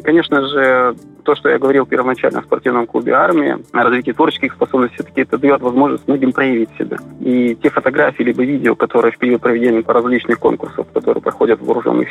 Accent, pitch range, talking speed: native, 125-150 Hz, 190 wpm